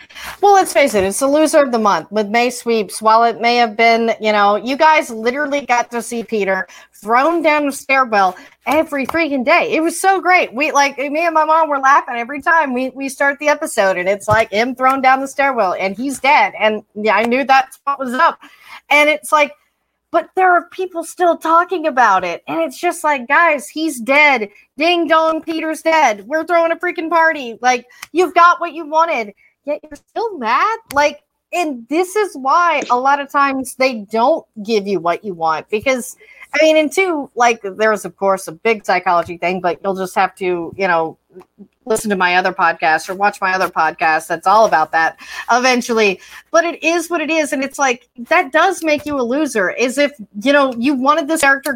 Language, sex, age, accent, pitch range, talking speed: English, female, 30-49, American, 225-330 Hz, 210 wpm